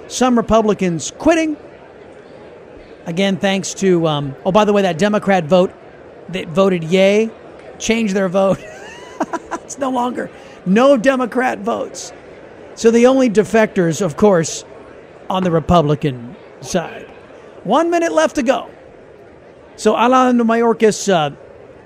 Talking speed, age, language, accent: 125 wpm, 40-59, English, American